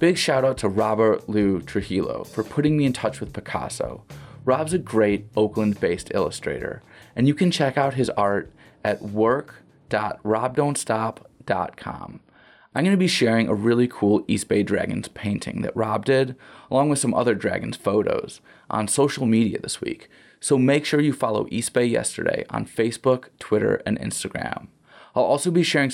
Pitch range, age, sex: 110-140 Hz, 20-39, male